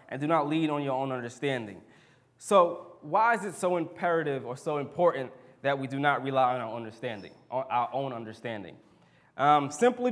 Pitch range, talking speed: 130-160 Hz, 185 wpm